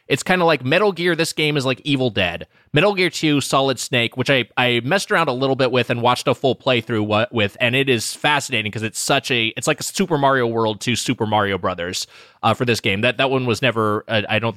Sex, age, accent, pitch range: male, 20-39, American, 115-145 Hz